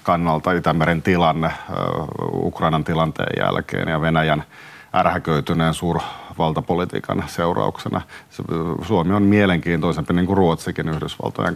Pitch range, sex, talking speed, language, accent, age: 80-95 Hz, male, 95 wpm, Finnish, native, 40-59